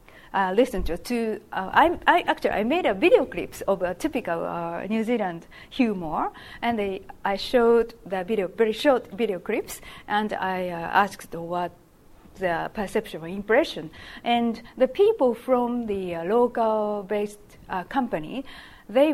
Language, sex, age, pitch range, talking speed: English, female, 40-59, 200-275 Hz, 145 wpm